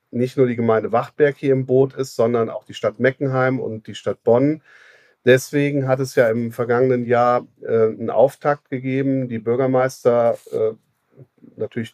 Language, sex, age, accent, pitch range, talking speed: German, male, 40-59, German, 115-135 Hz, 165 wpm